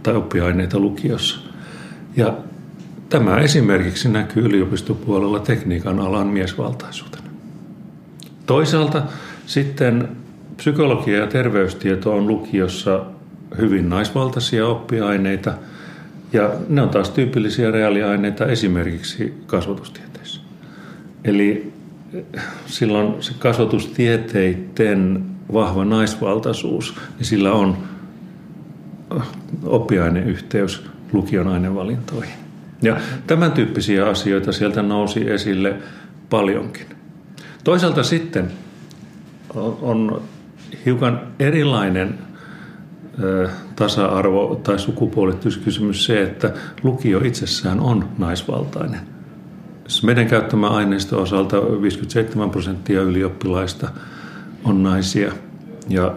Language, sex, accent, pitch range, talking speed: Finnish, male, native, 95-125 Hz, 75 wpm